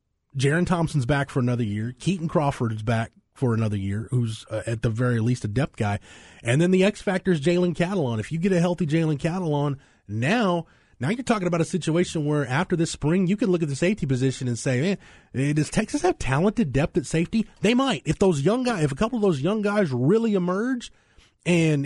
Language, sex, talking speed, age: English, male, 220 wpm, 30-49